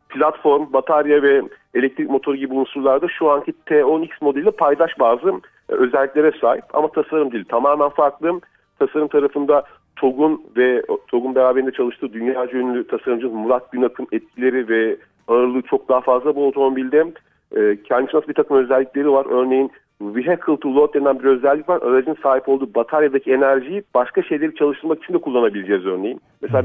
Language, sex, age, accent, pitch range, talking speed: Turkish, male, 50-69, native, 130-155 Hz, 155 wpm